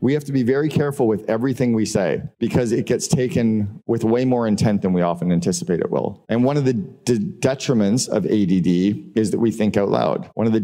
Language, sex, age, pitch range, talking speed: English, male, 40-59, 100-120 Hz, 230 wpm